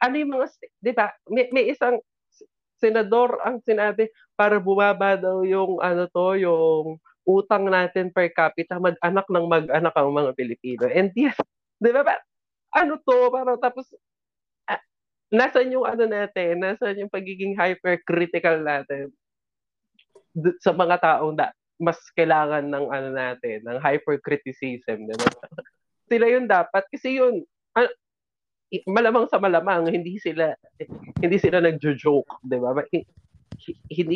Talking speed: 130 wpm